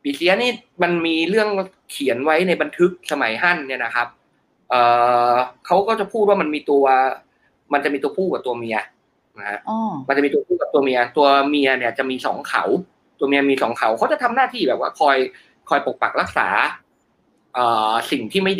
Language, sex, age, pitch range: Thai, male, 20-39, 125-180 Hz